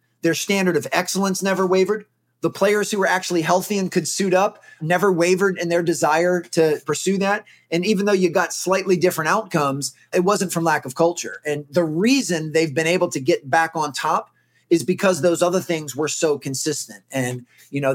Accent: American